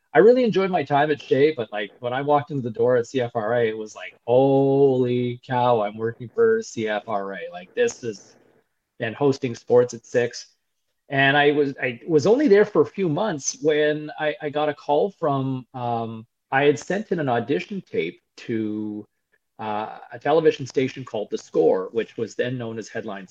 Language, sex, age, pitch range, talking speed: English, male, 40-59, 115-150 Hz, 190 wpm